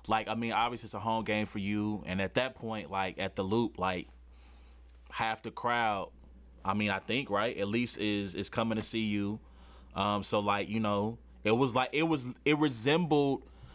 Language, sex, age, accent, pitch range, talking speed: English, male, 20-39, American, 105-130 Hz, 205 wpm